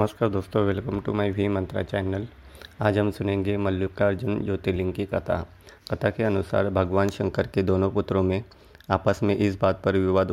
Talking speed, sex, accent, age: 175 wpm, male, native, 30-49